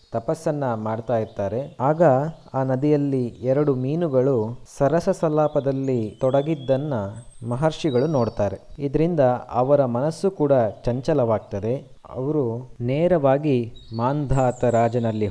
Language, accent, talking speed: Kannada, native, 90 wpm